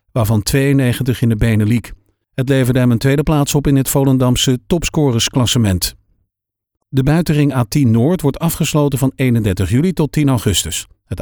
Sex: male